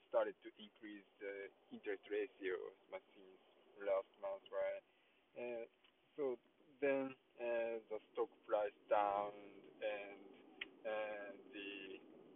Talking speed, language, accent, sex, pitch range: 105 wpm, English, French, male, 280-360 Hz